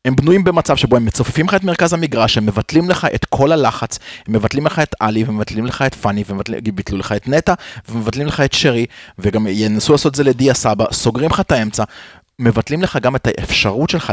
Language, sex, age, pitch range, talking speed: Hebrew, male, 30-49, 110-150 Hz, 225 wpm